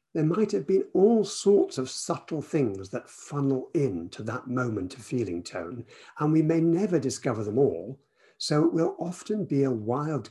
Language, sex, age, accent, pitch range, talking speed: English, male, 60-79, British, 120-155 Hz, 185 wpm